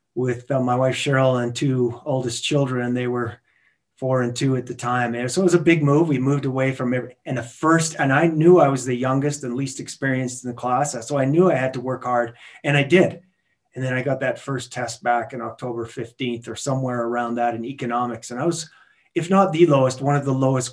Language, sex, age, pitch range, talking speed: English, male, 30-49, 125-145 Hz, 245 wpm